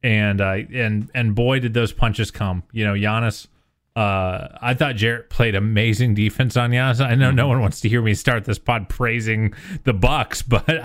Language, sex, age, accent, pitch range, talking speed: English, male, 30-49, American, 110-130 Hz, 205 wpm